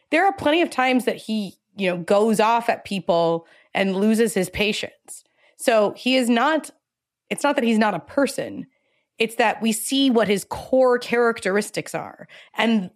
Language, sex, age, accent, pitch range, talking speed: English, female, 20-39, American, 195-260 Hz, 175 wpm